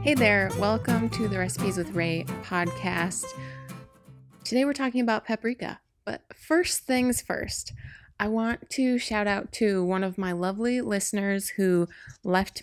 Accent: American